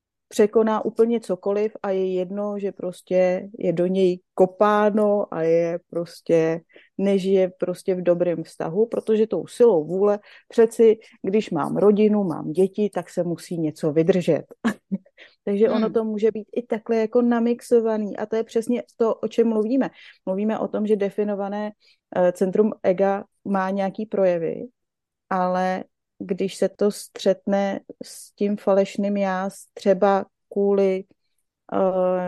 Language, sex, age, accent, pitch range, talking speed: Czech, female, 30-49, native, 185-210 Hz, 140 wpm